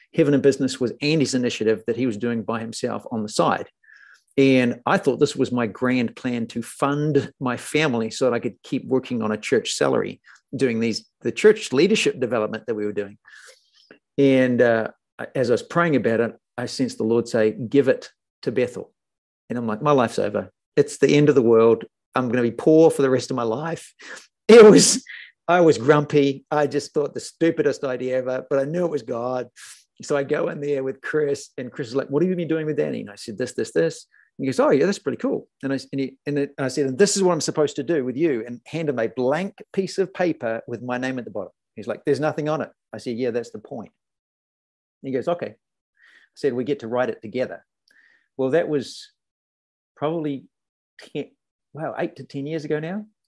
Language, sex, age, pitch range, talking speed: English, male, 50-69, 120-150 Hz, 230 wpm